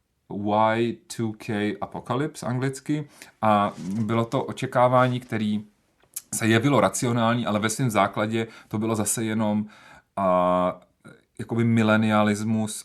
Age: 30-49